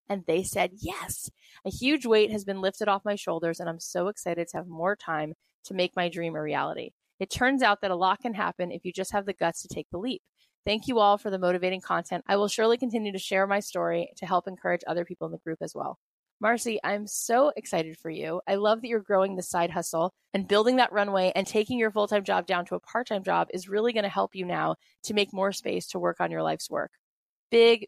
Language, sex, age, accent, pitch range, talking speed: English, female, 20-39, American, 175-215 Hz, 250 wpm